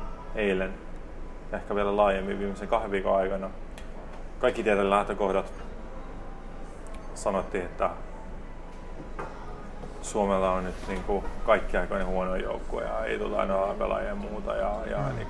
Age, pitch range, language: 30-49, 95-110 Hz, Finnish